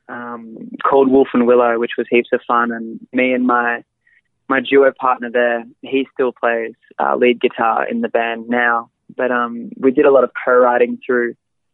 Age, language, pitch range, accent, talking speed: 20-39, English, 120-130 Hz, Australian, 190 wpm